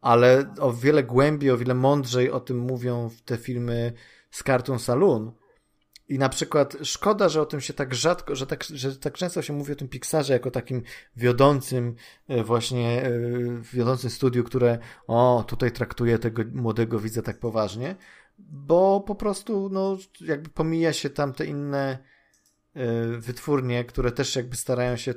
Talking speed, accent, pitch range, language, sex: 160 wpm, native, 120-145 Hz, Polish, male